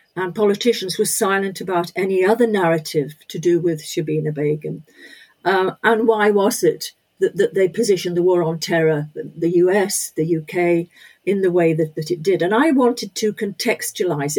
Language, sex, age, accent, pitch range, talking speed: English, female, 50-69, British, 175-235 Hz, 175 wpm